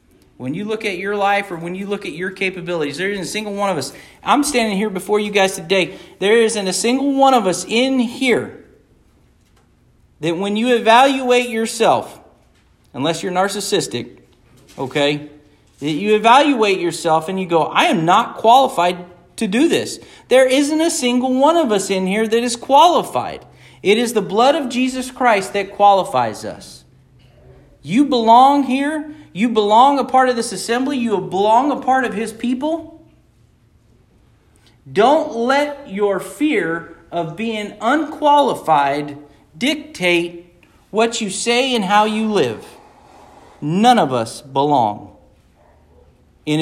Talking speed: 150 wpm